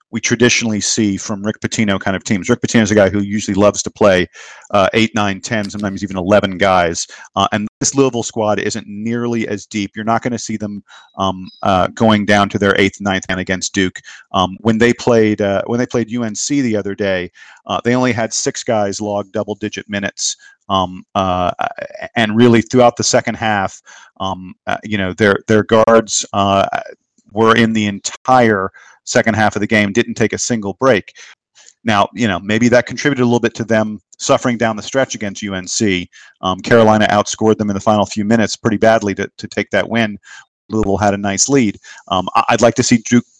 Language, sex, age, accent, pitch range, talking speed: English, male, 40-59, American, 100-120 Hz, 205 wpm